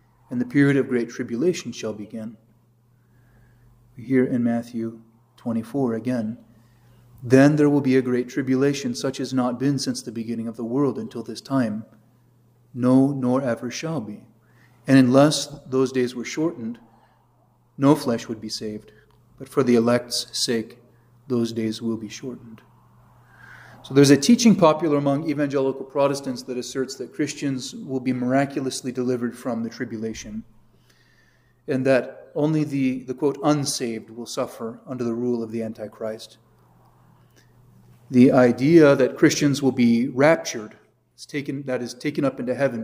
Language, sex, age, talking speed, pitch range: English, male, 30-49, 150 wpm, 115-135 Hz